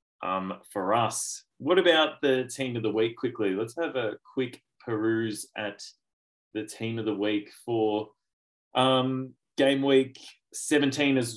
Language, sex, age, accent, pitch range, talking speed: English, male, 20-39, Australian, 105-140 Hz, 145 wpm